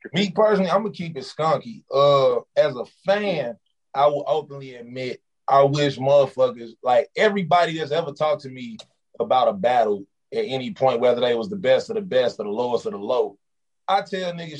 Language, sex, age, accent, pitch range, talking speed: English, male, 30-49, American, 135-190 Hz, 200 wpm